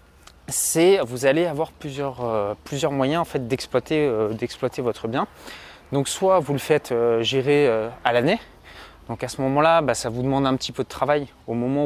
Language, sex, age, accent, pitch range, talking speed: French, male, 20-39, French, 120-155 Hz, 200 wpm